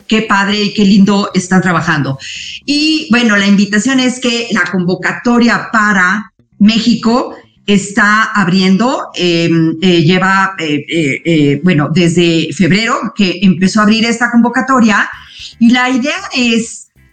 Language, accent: Spanish, Mexican